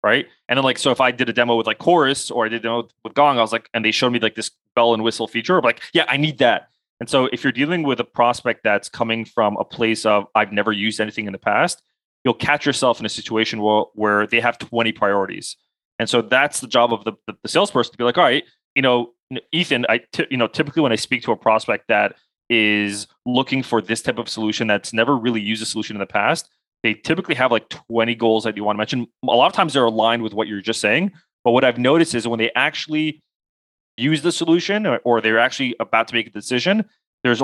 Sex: male